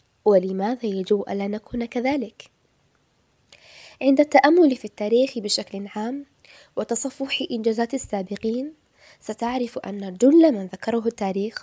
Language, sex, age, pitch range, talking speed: Arabic, female, 10-29, 200-255 Hz, 105 wpm